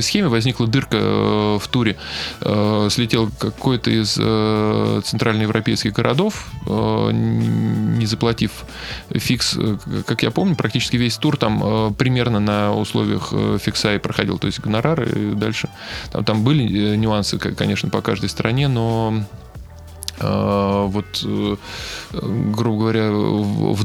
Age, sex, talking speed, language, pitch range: 20-39, male, 110 wpm, Russian, 105-115 Hz